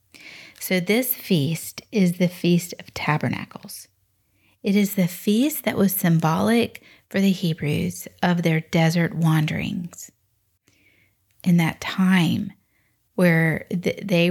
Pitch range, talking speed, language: 155-195 Hz, 115 wpm, English